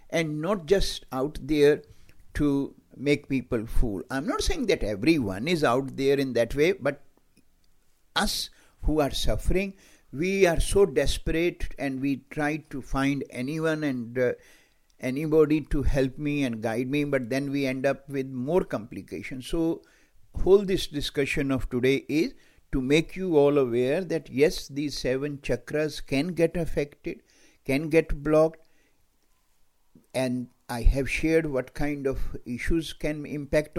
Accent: Indian